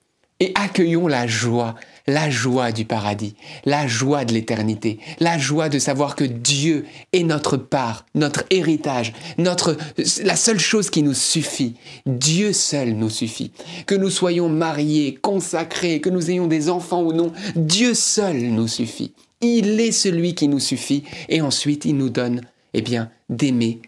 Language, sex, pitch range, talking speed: French, male, 125-160 Hz, 160 wpm